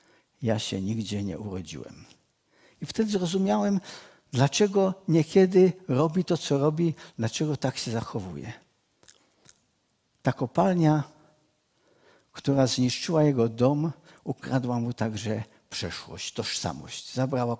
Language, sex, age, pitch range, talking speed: Czech, male, 50-69, 125-180 Hz, 100 wpm